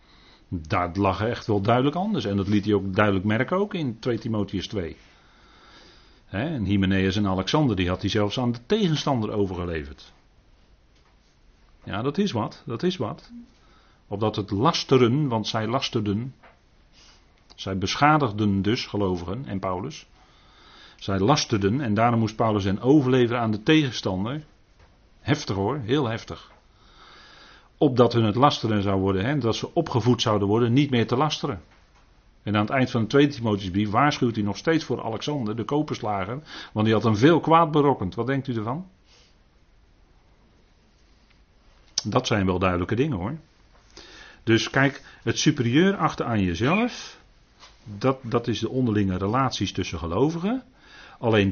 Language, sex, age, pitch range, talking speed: Dutch, male, 40-59, 100-135 Hz, 150 wpm